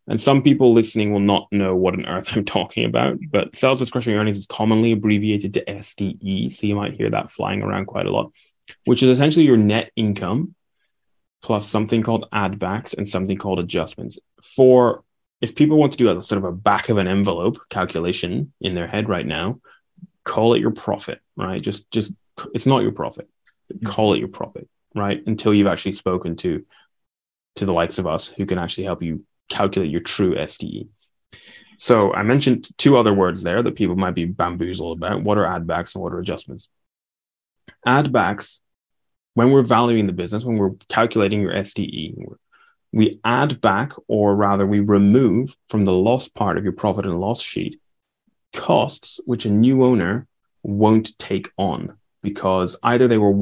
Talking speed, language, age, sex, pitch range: 185 wpm, English, 10-29, male, 95-115 Hz